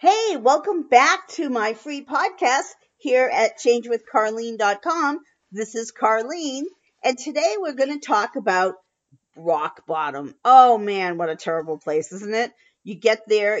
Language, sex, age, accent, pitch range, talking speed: English, female, 50-69, American, 185-245 Hz, 140 wpm